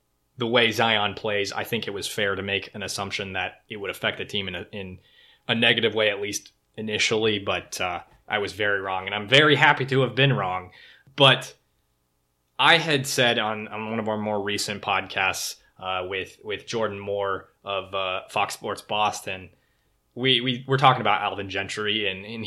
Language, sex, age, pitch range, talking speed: English, male, 20-39, 100-125 Hz, 195 wpm